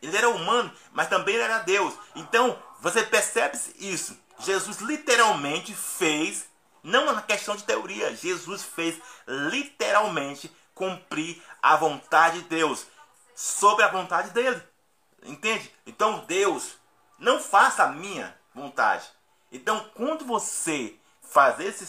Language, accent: Portuguese, Brazilian